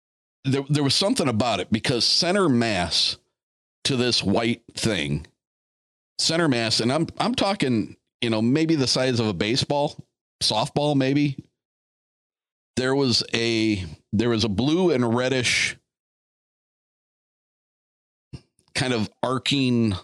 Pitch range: 100-130 Hz